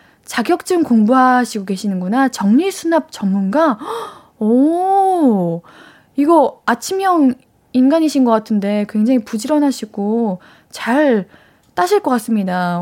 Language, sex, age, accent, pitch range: Korean, female, 20-39, native, 195-270 Hz